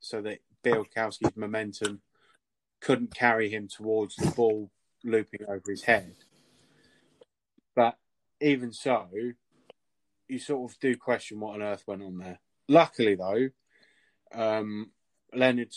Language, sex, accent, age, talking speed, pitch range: English, male, British, 20-39, 120 wpm, 100-120 Hz